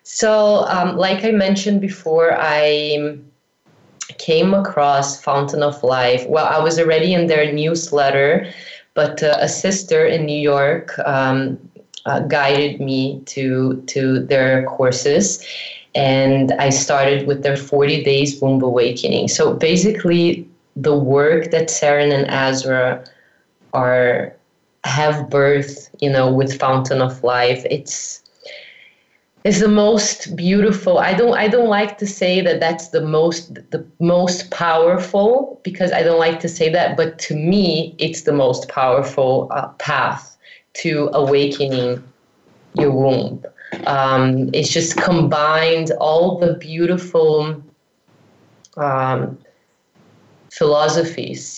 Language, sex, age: English, female, 20-39